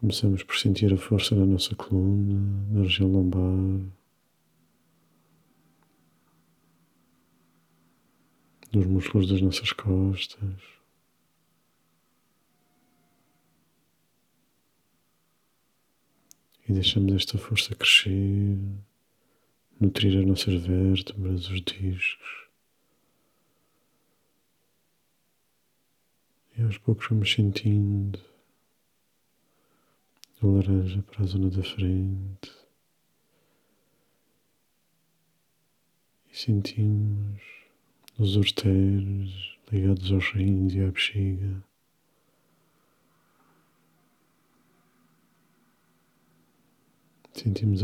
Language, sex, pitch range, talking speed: Portuguese, male, 95-100 Hz, 60 wpm